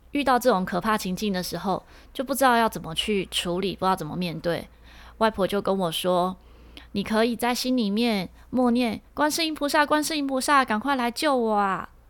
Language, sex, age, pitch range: Chinese, female, 20-39, 185-250 Hz